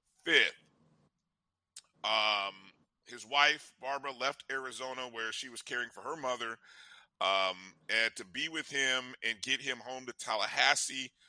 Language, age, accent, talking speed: English, 50-69, American, 140 wpm